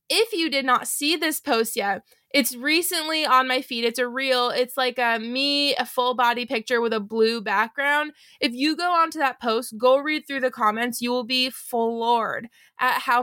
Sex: female